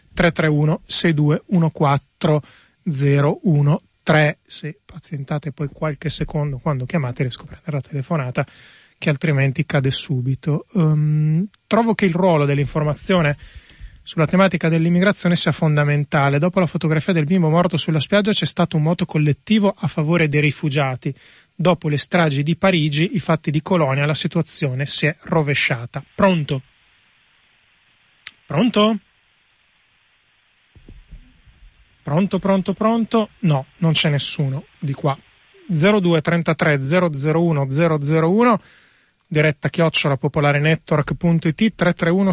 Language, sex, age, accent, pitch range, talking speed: Italian, male, 30-49, native, 150-180 Hz, 115 wpm